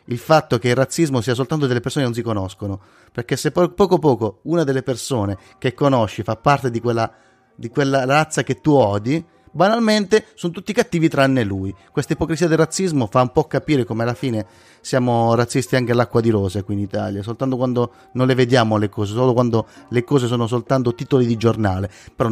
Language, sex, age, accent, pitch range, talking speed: Italian, male, 30-49, native, 105-135 Hz, 200 wpm